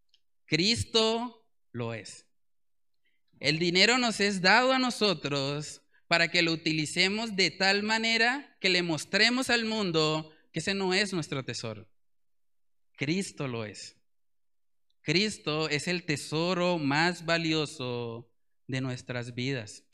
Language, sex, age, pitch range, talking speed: Spanish, male, 30-49, 150-200 Hz, 120 wpm